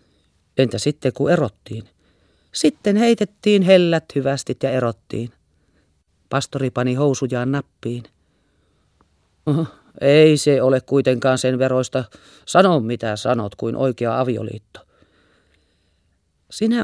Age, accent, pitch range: 40-59, native, 110-140 Hz